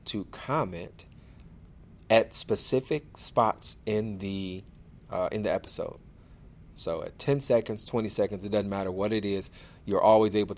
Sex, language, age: male, English, 40-59